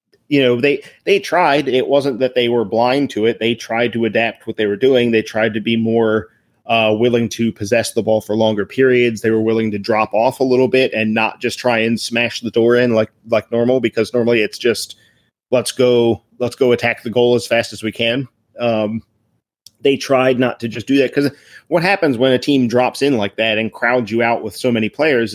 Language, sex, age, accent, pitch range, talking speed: English, male, 30-49, American, 110-125 Hz, 230 wpm